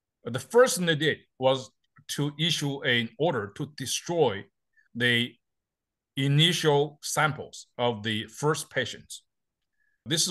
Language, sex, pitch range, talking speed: English, male, 115-150 Hz, 115 wpm